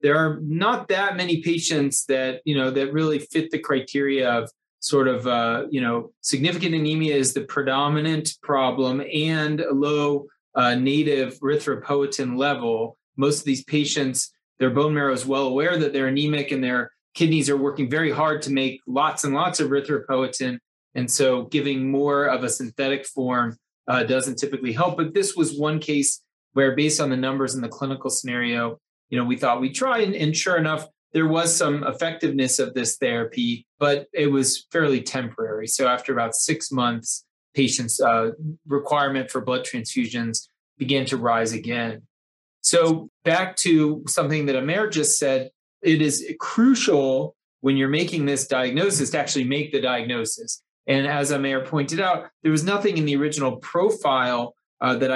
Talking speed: 175 wpm